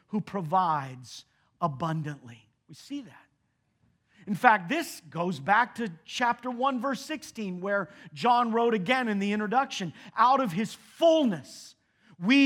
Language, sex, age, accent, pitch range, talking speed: English, male, 40-59, American, 175-240 Hz, 135 wpm